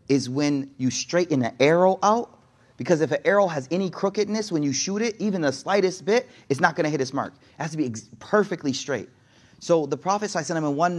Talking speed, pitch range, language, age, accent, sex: 230 wpm, 130-190 Hz, English, 30-49, American, male